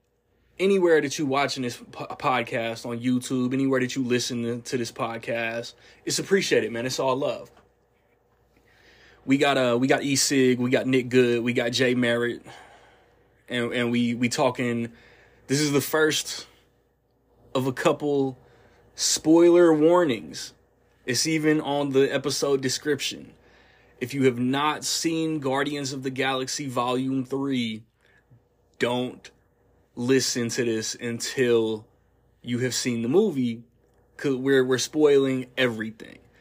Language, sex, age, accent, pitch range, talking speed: English, male, 20-39, American, 120-140 Hz, 140 wpm